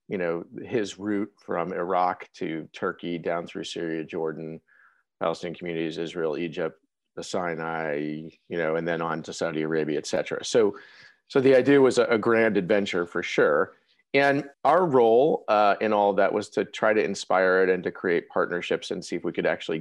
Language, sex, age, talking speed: English, male, 40-59, 185 wpm